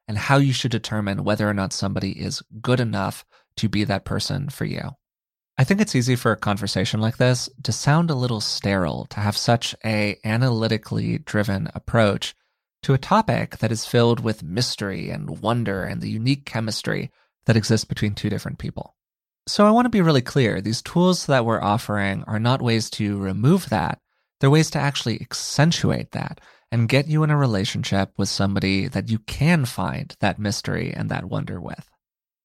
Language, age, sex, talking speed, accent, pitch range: English, 20-39, male, 185 wpm, American, 105-130 Hz